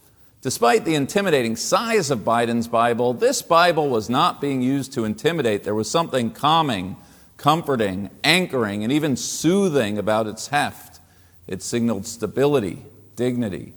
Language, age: English, 40-59